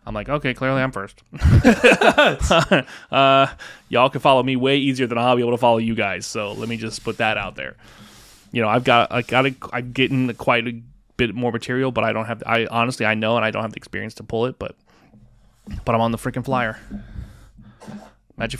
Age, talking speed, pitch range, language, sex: 20-39, 225 wpm, 110-130 Hz, English, male